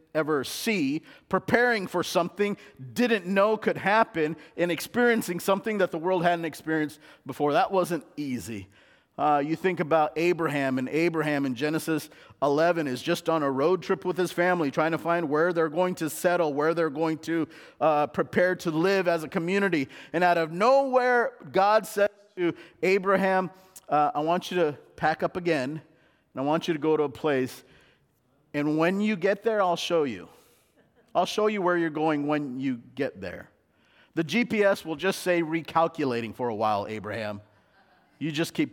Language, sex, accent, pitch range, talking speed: English, male, American, 155-190 Hz, 180 wpm